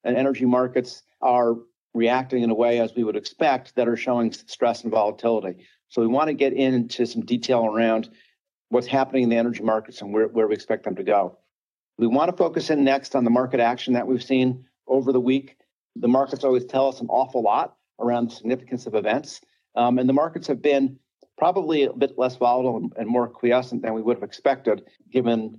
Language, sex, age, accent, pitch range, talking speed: English, male, 50-69, American, 115-130 Hz, 210 wpm